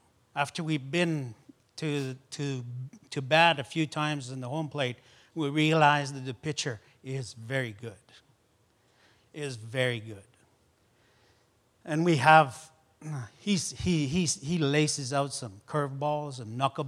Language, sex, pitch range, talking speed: English, male, 125-155 Hz, 135 wpm